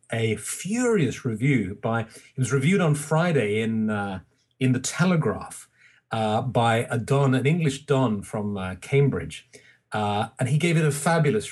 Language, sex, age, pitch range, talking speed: English, male, 40-59, 120-155 Hz, 160 wpm